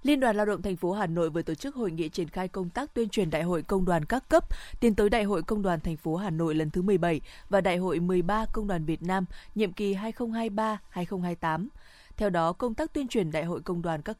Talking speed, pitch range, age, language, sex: 255 wpm, 170-215 Hz, 20-39, Vietnamese, female